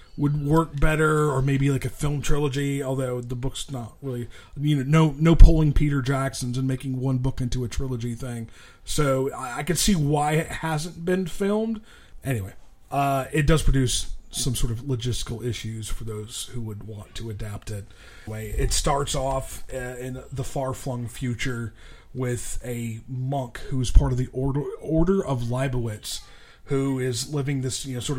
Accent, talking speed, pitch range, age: American, 180 wpm, 120-140 Hz, 30-49